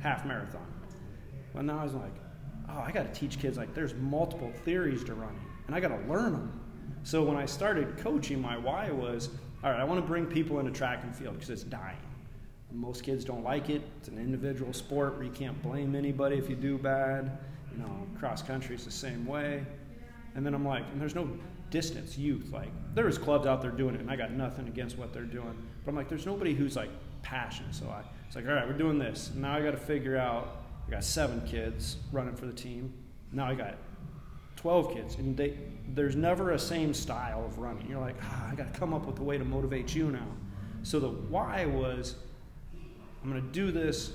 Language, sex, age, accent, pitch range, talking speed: English, male, 30-49, American, 125-145 Hz, 230 wpm